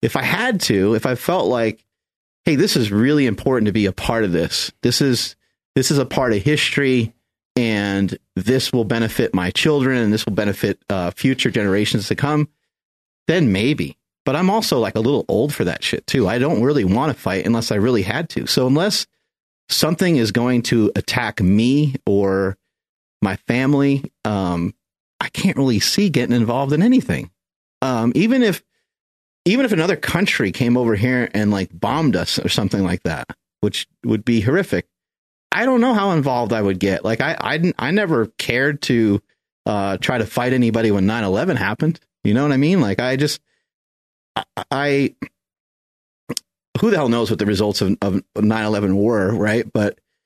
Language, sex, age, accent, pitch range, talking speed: English, male, 30-49, American, 100-135 Hz, 185 wpm